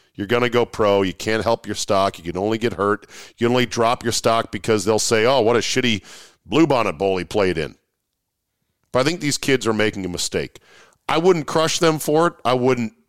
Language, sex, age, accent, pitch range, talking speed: English, male, 40-59, American, 105-135 Hz, 230 wpm